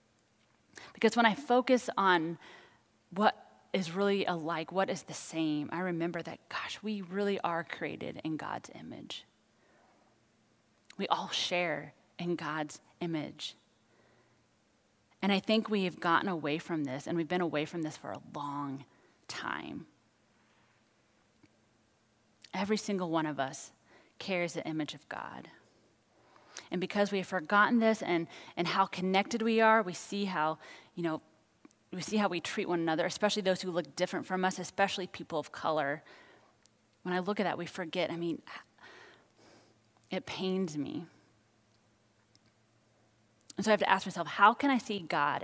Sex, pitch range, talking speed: female, 145-195 Hz, 155 wpm